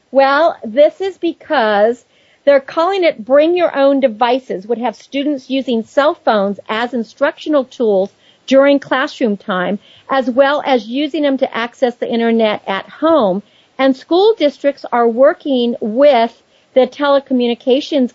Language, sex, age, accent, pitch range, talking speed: English, female, 50-69, American, 235-285 Hz, 140 wpm